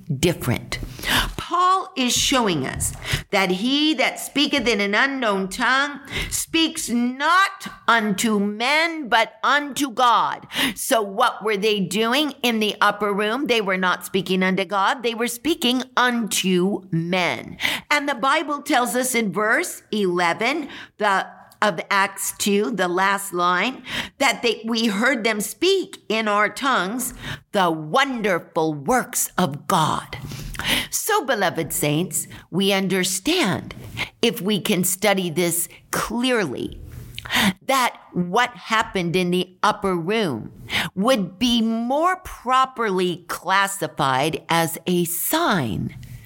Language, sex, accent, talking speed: English, female, American, 120 wpm